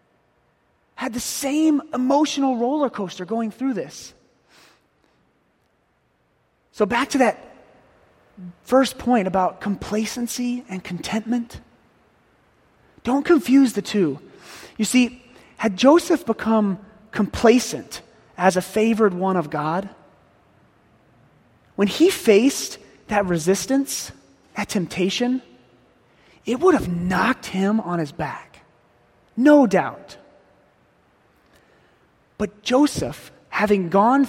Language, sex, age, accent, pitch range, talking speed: English, male, 30-49, American, 190-260 Hz, 100 wpm